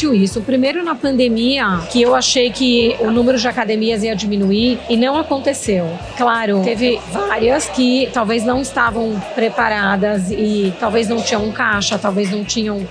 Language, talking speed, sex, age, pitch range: Portuguese, 155 wpm, female, 30-49, 210-265 Hz